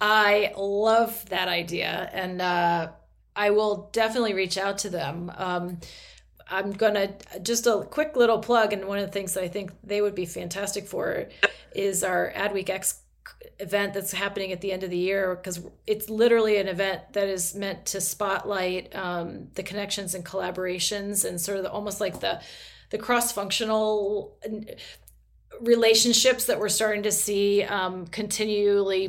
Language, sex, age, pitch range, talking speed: English, female, 30-49, 190-220 Hz, 165 wpm